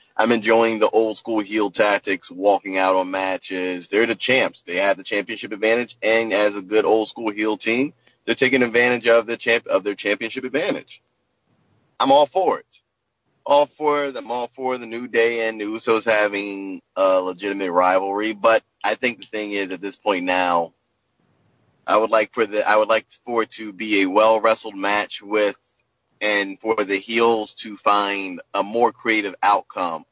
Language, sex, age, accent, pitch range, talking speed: English, male, 30-49, American, 100-125 Hz, 185 wpm